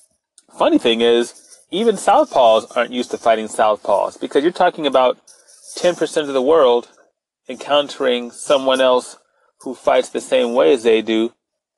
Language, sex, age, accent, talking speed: English, male, 30-49, American, 150 wpm